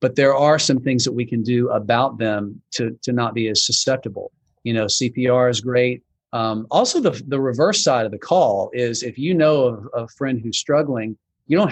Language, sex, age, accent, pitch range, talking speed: English, male, 40-59, American, 115-140 Hz, 220 wpm